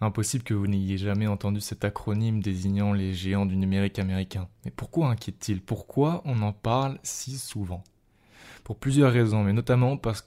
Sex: male